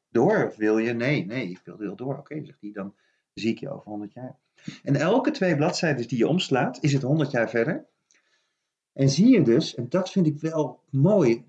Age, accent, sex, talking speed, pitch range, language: 40-59, Dutch, male, 220 wpm, 115-155 Hz, Dutch